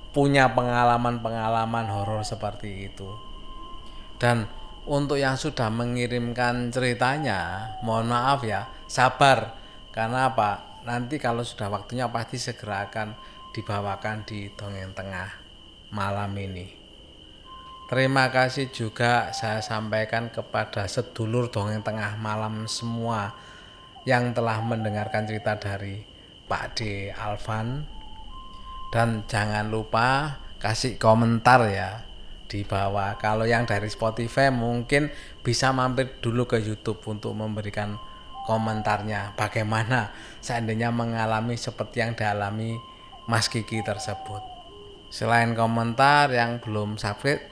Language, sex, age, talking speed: Indonesian, male, 20-39, 105 wpm